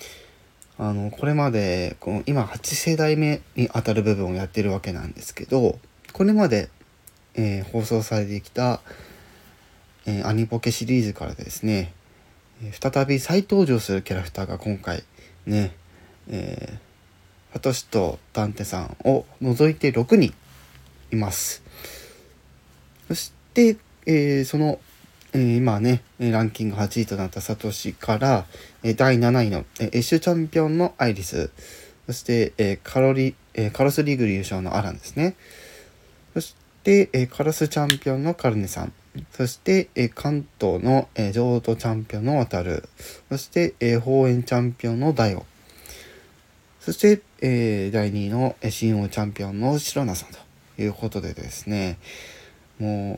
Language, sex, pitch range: Japanese, male, 95-130 Hz